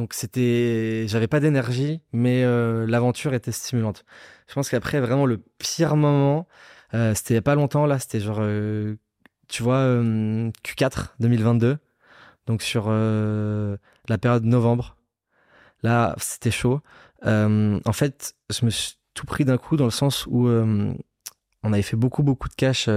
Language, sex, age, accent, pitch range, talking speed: French, male, 20-39, French, 105-125 Hz, 160 wpm